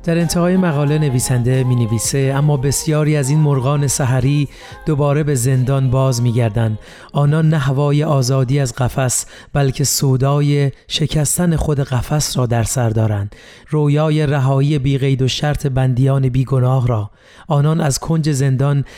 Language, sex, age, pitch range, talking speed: Persian, male, 30-49, 130-150 Hz, 140 wpm